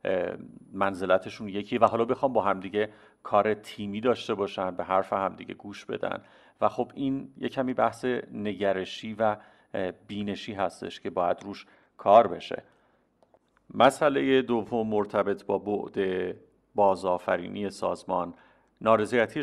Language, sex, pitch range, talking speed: Persian, male, 100-125 Hz, 120 wpm